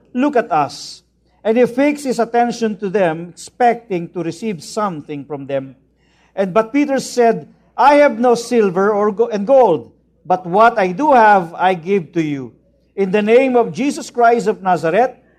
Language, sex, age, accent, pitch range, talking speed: English, male, 50-69, Filipino, 175-240 Hz, 175 wpm